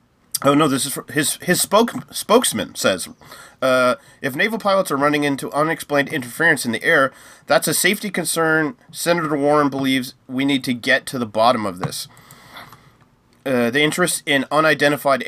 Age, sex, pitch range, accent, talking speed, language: 30-49, male, 130-160 Hz, American, 165 wpm, English